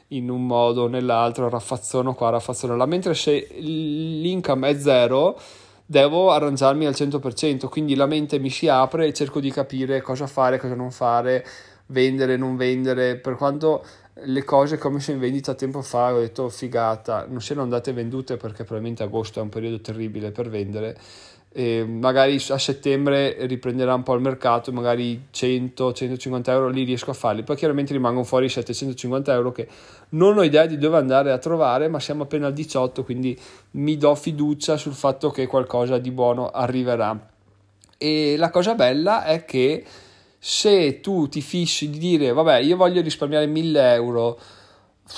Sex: male